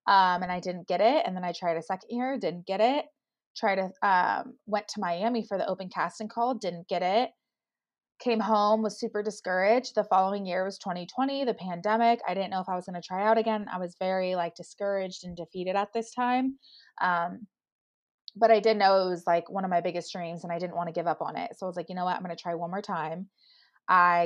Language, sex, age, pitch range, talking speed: English, female, 20-39, 180-230 Hz, 245 wpm